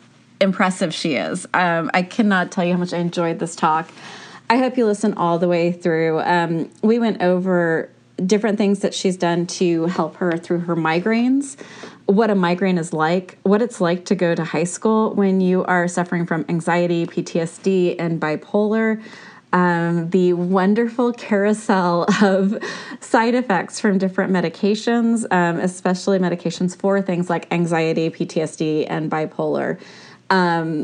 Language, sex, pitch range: English, female, 165-195 Hz